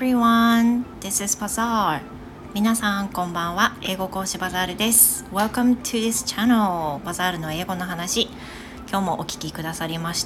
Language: Japanese